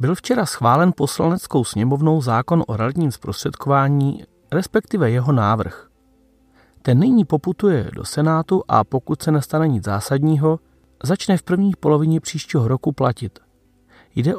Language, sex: Czech, male